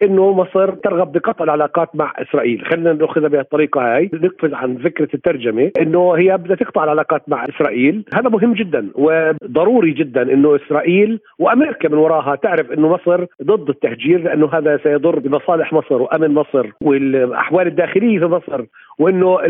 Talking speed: 155 wpm